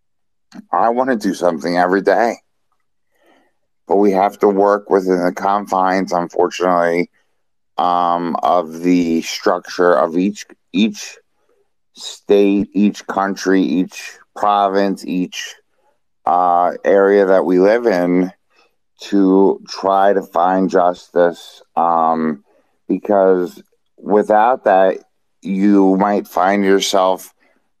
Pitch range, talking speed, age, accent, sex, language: 90-105 Hz, 105 wpm, 50-69, American, male, English